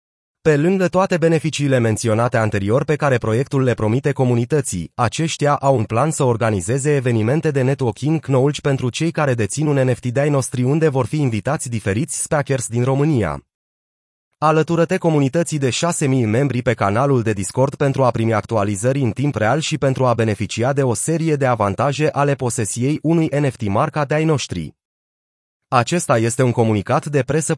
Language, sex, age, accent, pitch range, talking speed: Romanian, male, 30-49, native, 115-150 Hz, 170 wpm